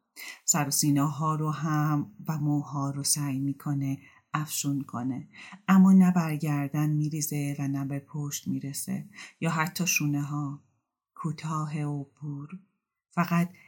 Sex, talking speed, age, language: female, 125 wpm, 40-59, Persian